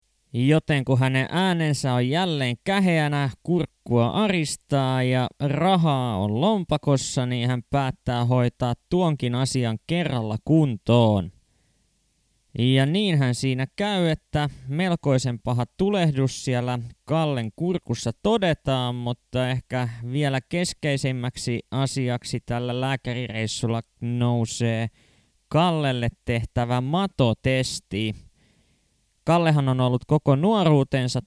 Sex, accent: male, native